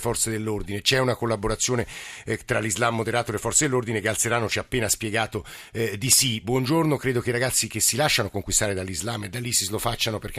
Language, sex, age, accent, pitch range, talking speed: Italian, male, 50-69, native, 110-140 Hz, 210 wpm